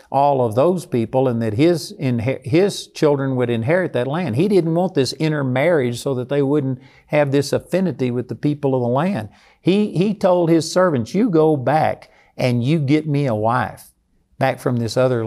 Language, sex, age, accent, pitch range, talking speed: English, male, 50-69, American, 125-165 Hz, 200 wpm